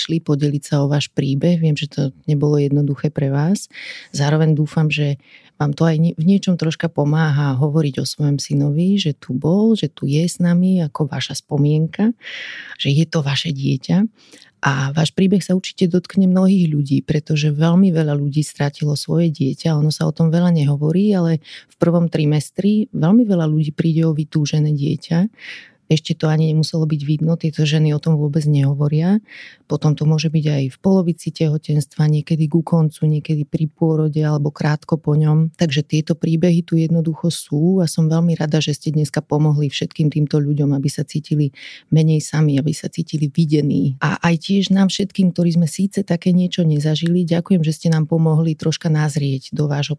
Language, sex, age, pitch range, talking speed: Slovak, female, 30-49, 150-170 Hz, 180 wpm